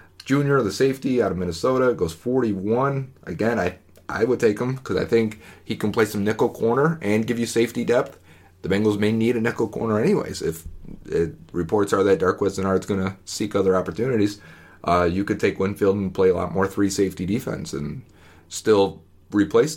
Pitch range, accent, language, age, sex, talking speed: 90-110 Hz, American, English, 30-49, male, 195 wpm